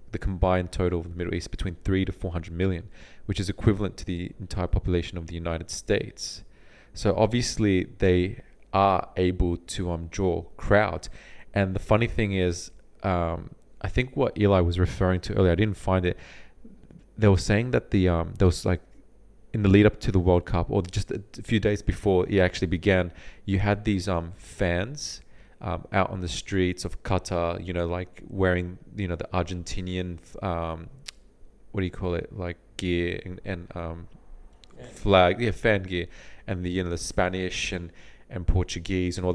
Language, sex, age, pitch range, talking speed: English, male, 30-49, 90-100 Hz, 190 wpm